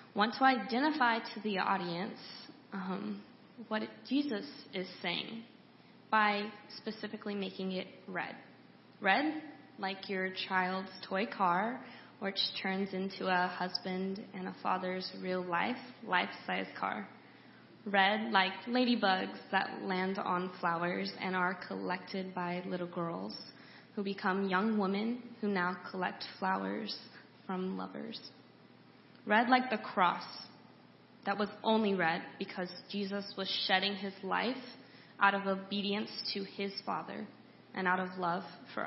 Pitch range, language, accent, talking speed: 185-210 Hz, English, American, 130 wpm